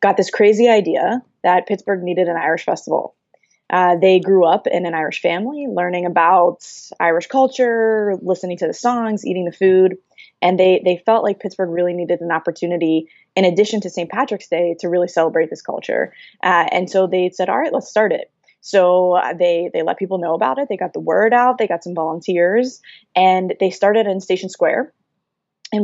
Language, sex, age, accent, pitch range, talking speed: English, female, 20-39, American, 175-200 Hz, 195 wpm